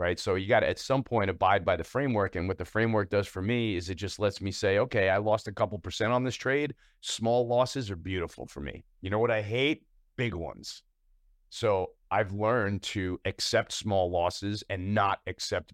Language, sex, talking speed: English, male, 215 wpm